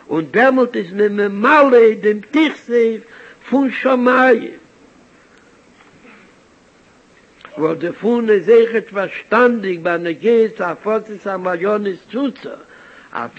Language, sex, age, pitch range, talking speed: Hebrew, male, 60-79, 190-230 Hz, 130 wpm